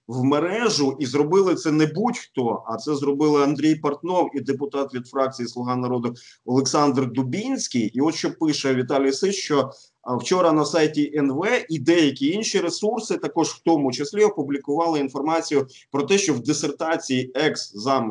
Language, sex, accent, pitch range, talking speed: Ukrainian, male, native, 125-165 Hz, 155 wpm